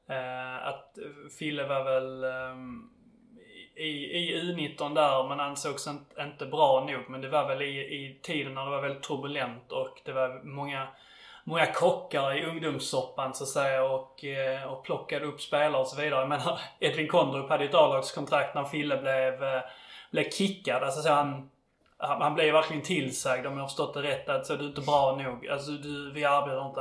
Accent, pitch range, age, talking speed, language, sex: native, 130-155 Hz, 20-39, 195 wpm, Swedish, male